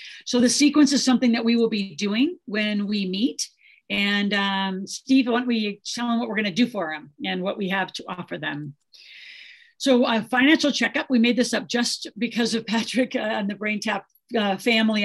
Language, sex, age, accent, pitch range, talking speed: English, female, 50-69, American, 195-235 Hz, 205 wpm